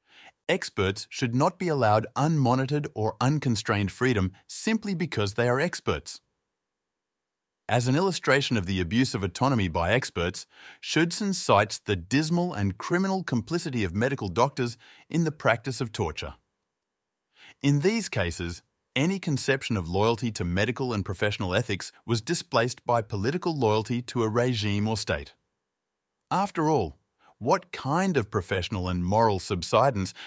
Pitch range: 105-145 Hz